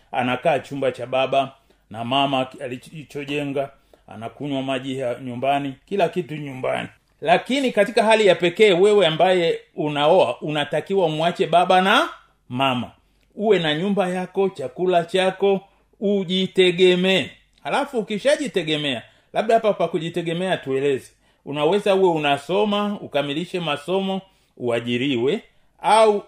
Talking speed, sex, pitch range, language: 105 wpm, male, 145-205 Hz, Swahili